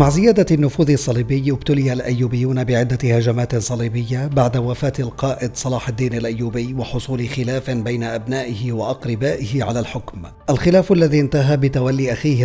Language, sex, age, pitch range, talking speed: Arabic, male, 40-59, 120-135 Hz, 130 wpm